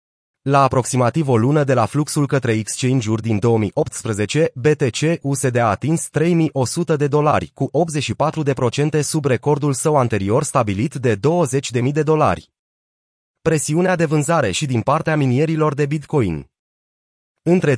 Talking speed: 130 wpm